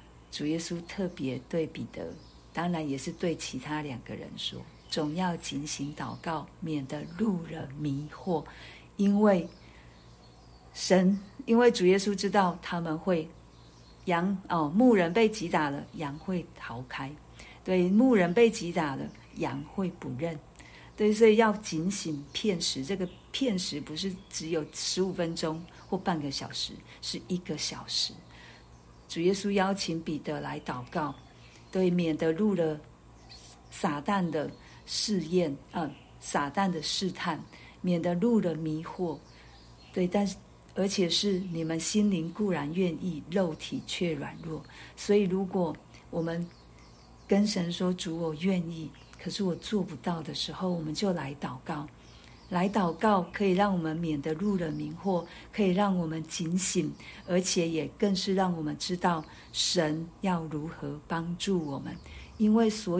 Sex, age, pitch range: female, 50-69, 150-190 Hz